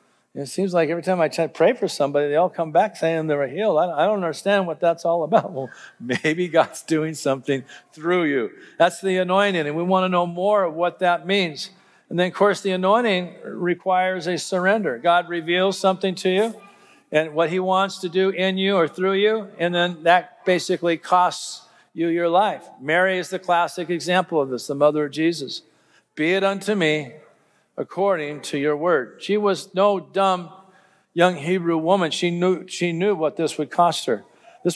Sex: male